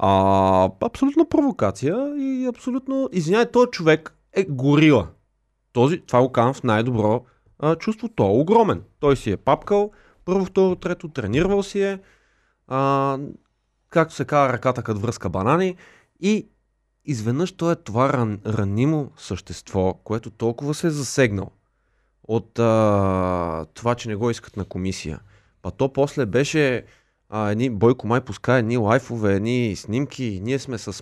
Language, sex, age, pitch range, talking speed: Bulgarian, male, 30-49, 110-175 Hz, 140 wpm